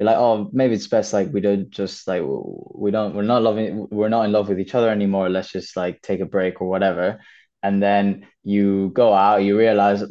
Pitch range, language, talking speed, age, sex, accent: 95-105 Hz, English, 225 wpm, 10-29, male, British